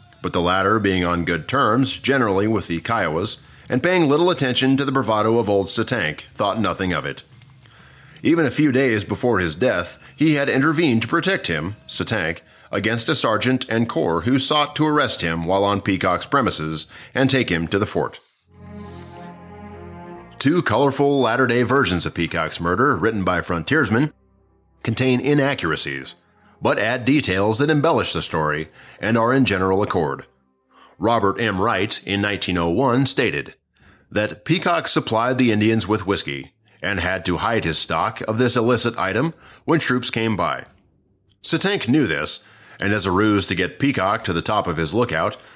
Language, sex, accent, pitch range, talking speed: English, male, American, 95-130 Hz, 165 wpm